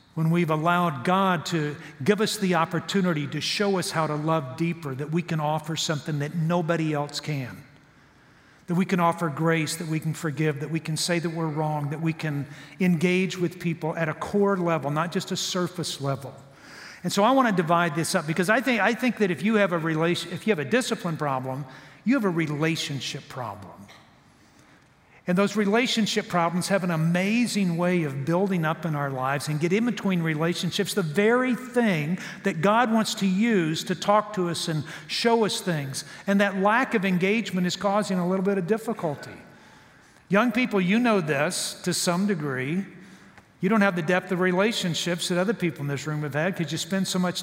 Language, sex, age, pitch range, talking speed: English, male, 50-69, 155-200 Hz, 205 wpm